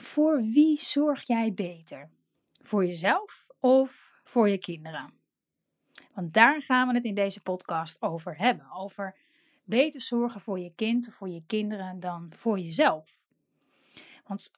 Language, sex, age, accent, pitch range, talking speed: Dutch, female, 30-49, Dutch, 205-250 Hz, 145 wpm